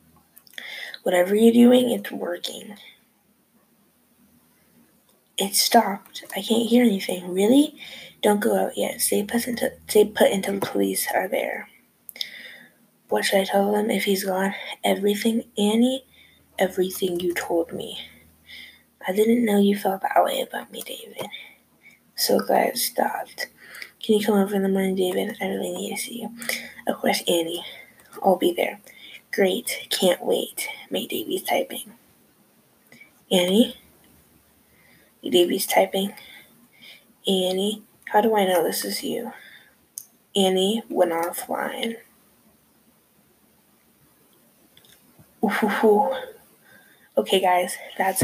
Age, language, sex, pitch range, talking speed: 20-39, English, female, 190-235 Hz, 120 wpm